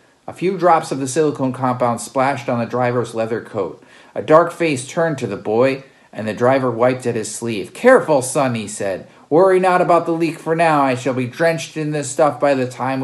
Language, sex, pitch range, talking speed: English, male, 120-155 Hz, 220 wpm